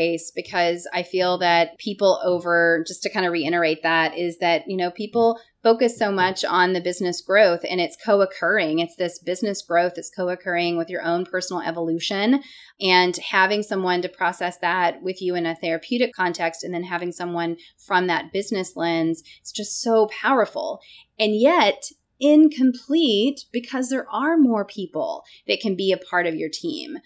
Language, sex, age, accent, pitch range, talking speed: English, female, 20-39, American, 170-210 Hz, 175 wpm